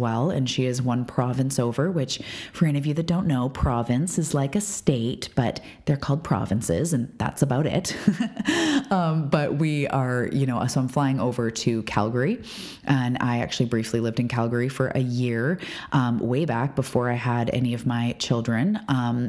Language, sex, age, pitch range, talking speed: English, female, 30-49, 120-145 Hz, 190 wpm